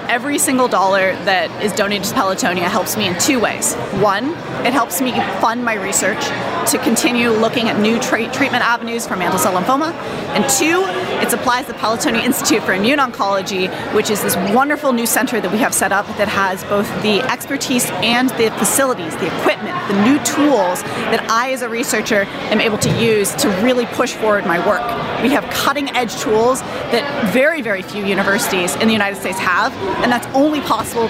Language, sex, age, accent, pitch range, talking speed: English, female, 30-49, American, 210-255 Hz, 190 wpm